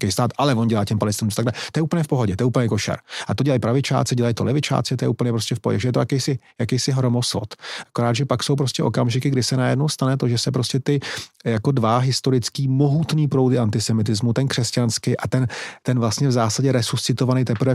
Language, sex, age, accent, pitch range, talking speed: Czech, male, 30-49, native, 115-130 Hz, 225 wpm